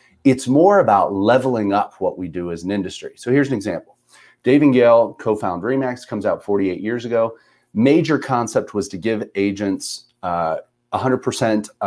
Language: English